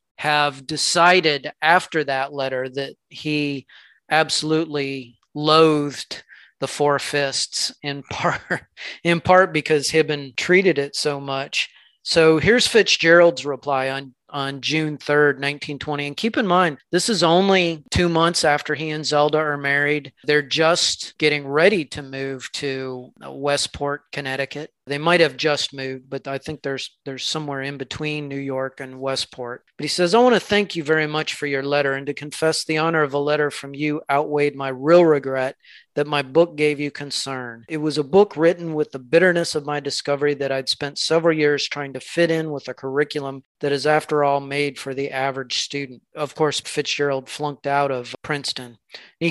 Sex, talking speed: male, 175 wpm